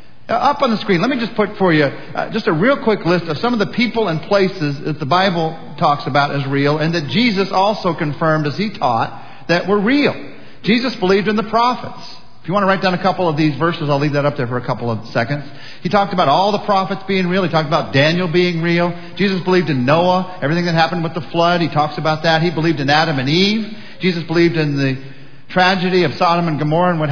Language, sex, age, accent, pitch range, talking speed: English, male, 50-69, American, 150-195 Hz, 250 wpm